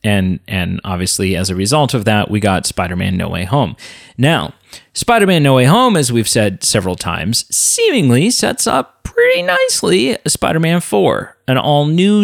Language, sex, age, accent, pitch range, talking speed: English, male, 40-59, American, 105-160 Hz, 165 wpm